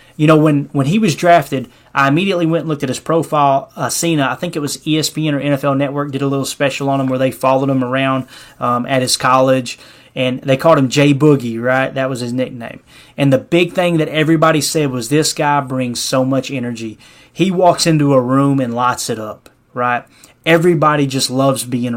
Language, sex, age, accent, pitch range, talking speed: English, male, 20-39, American, 130-155 Hz, 215 wpm